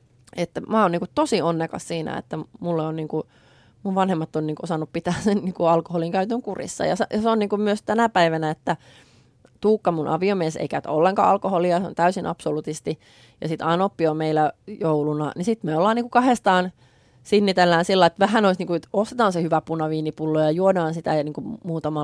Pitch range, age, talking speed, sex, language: 155-195 Hz, 30-49, 195 wpm, female, Finnish